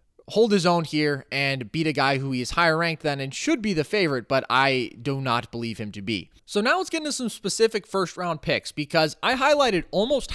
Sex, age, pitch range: male, 20-39, 135-190 Hz